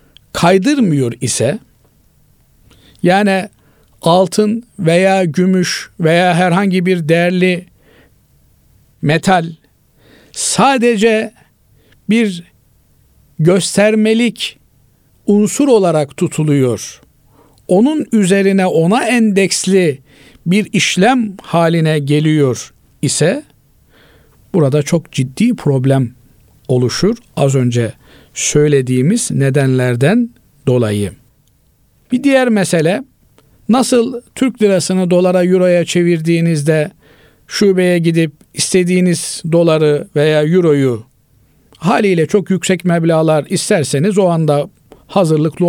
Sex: male